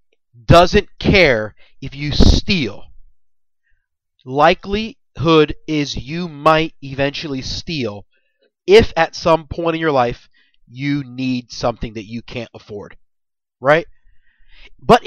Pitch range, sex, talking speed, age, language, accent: 125-180 Hz, male, 110 wpm, 30-49, English, American